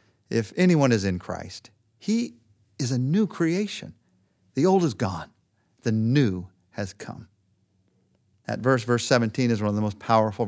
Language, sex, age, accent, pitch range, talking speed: English, male, 50-69, American, 115-160 Hz, 160 wpm